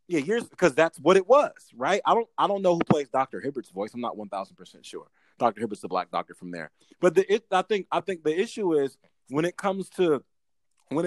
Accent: American